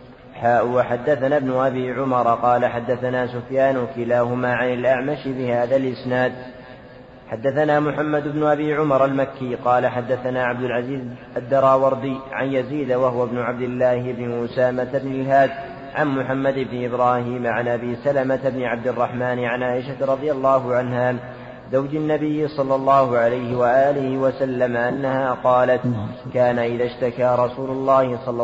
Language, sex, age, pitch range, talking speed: Arabic, male, 30-49, 125-135 Hz, 135 wpm